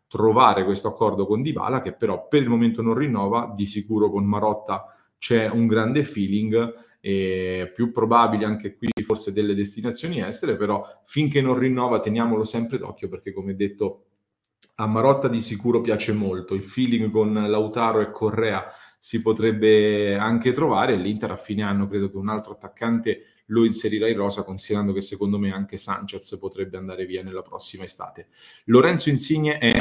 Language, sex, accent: Italian, male, native